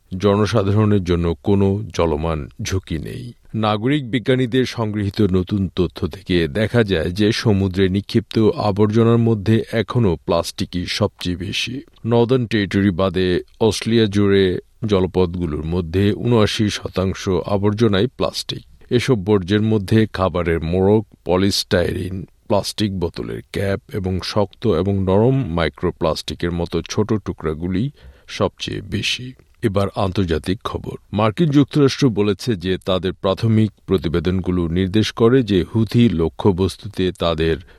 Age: 50-69